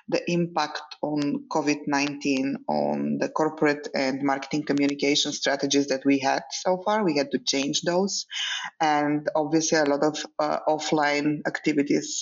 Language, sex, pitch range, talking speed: Bulgarian, female, 145-165 Hz, 140 wpm